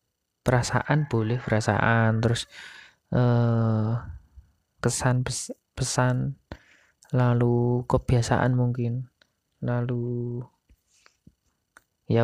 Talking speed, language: 55 wpm, Indonesian